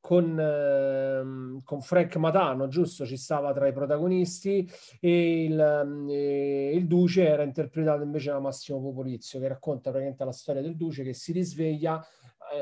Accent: native